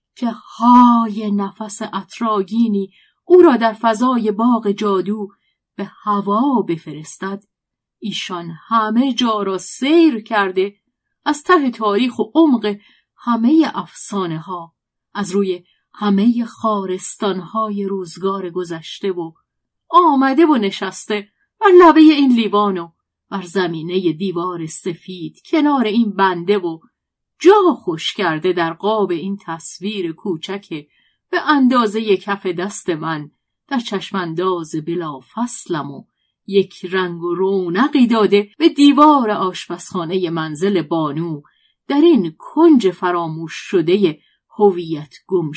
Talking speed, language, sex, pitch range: 115 wpm, Persian, female, 175-225 Hz